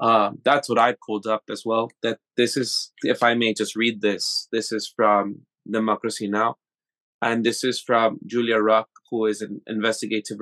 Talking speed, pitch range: 185 wpm, 110-130 Hz